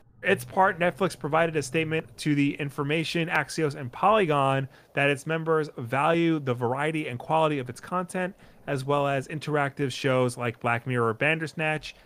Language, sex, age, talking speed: English, male, 30-49, 160 wpm